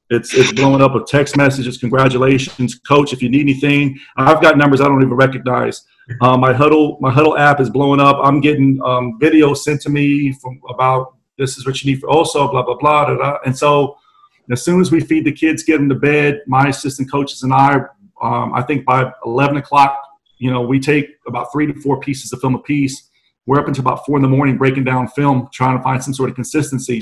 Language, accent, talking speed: English, American, 235 wpm